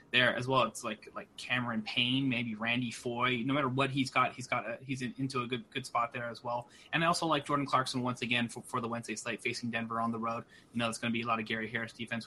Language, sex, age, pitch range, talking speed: English, male, 20-39, 115-140 Hz, 290 wpm